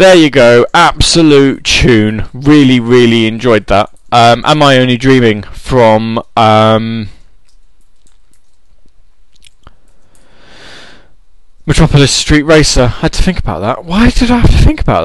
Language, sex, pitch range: English, male, 100-150 Hz